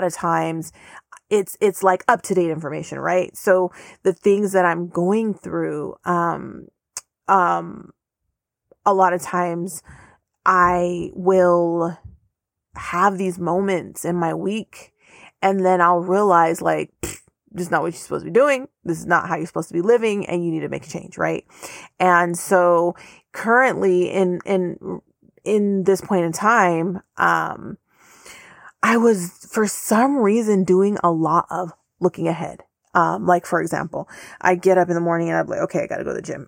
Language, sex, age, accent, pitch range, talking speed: English, female, 30-49, American, 170-190 Hz, 170 wpm